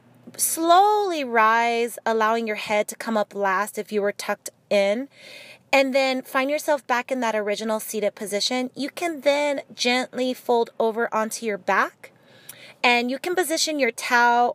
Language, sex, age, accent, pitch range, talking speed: English, female, 30-49, American, 205-260 Hz, 160 wpm